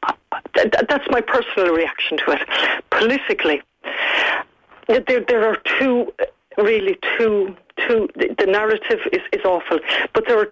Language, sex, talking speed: English, female, 125 wpm